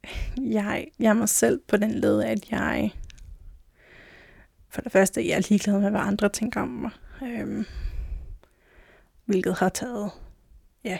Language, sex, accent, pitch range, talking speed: Danish, female, native, 185-220 Hz, 145 wpm